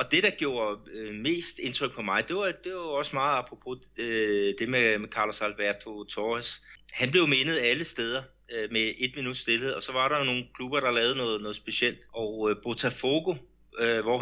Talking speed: 205 wpm